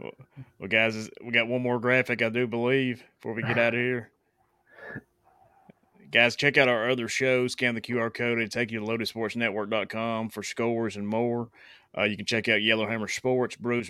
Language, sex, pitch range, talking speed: English, male, 110-120 Hz, 185 wpm